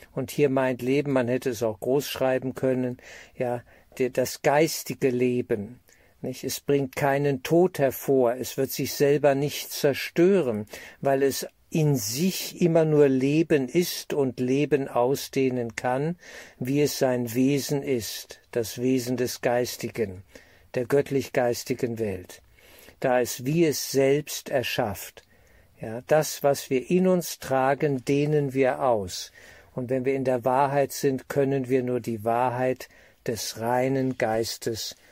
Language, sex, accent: German, male, German